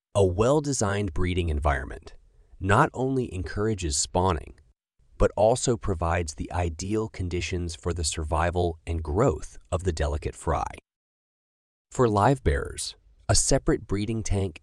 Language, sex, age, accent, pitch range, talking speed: English, male, 30-49, American, 80-105 Hz, 125 wpm